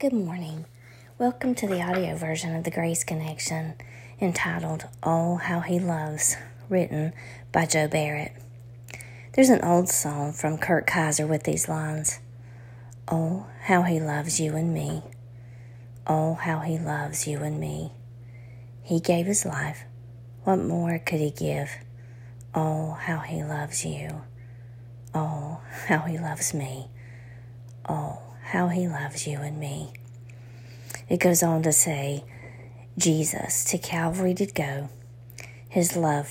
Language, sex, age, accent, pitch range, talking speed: English, female, 40-59, American, 120-165 Hz, 135 wpm